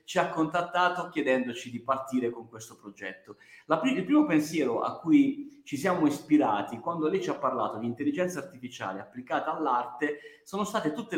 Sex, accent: male, native